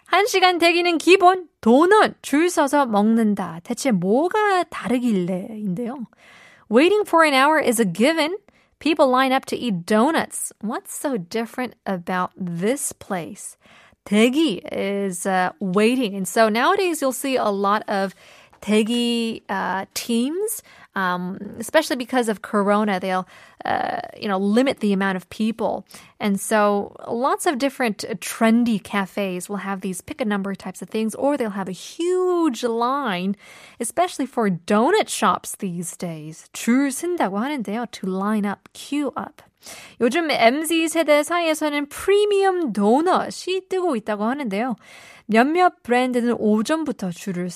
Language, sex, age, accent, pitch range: Korean, female, 20-39, American, 205-290 Hz